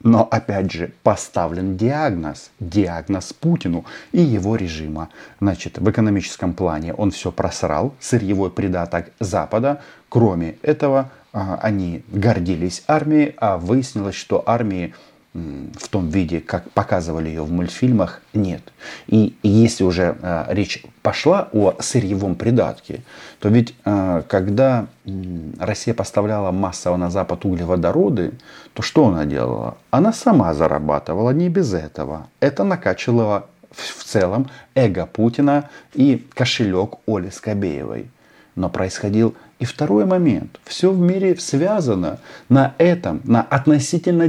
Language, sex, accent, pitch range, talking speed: Russian, male, native, 90-125 Hz, 120 wpm